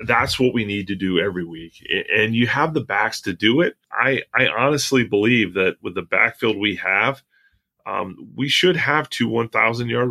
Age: 30-49